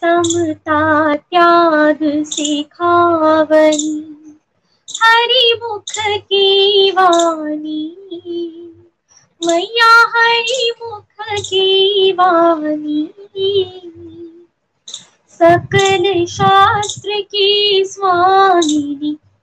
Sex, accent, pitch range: female, native, 310-390 Hz